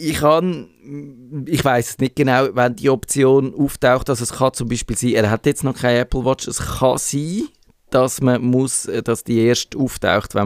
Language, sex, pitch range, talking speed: German, male, 105-125 Hz, 200 wpm